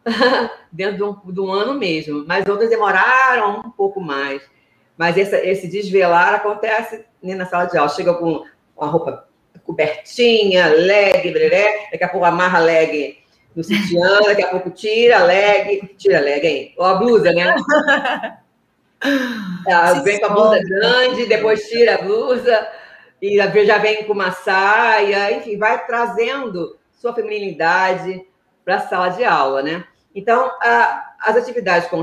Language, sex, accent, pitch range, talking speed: Portuguese, female, Brazilian, 175-230 Hz, 145 wpm